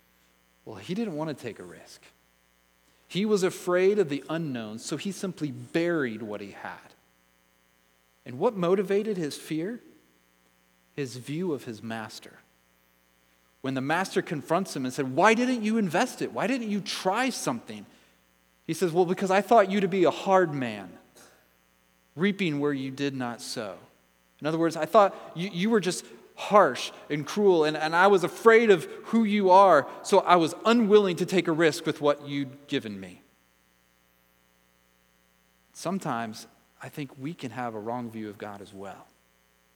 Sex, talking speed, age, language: male, 170 wpm, 30-49, English